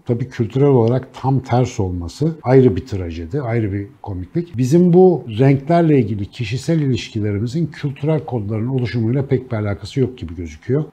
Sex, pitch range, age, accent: male, 110-140 Hz, 60-79, native